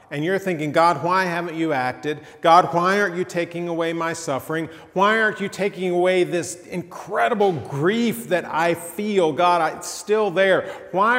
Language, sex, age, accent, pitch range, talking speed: English, male, 40-59, American, 135-200 Hz, 170 wpm